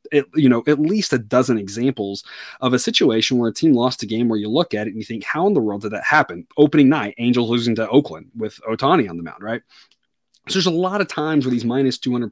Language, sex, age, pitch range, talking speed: English, male, 30-49, 120-170 Hz, 260 wpm